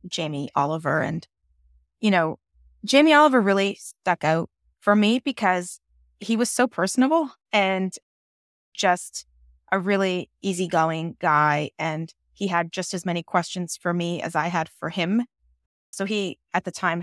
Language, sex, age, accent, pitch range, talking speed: English, female, 20-39, American, 145-180 Hz, 150 wpm